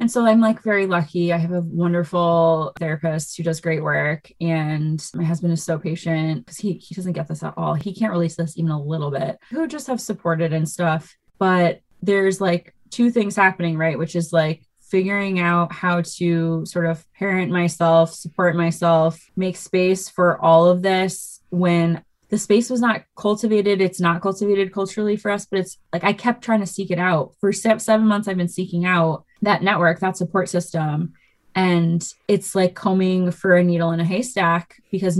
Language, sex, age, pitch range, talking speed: English, female, 20-39, 165-190 Hz, 195 wpm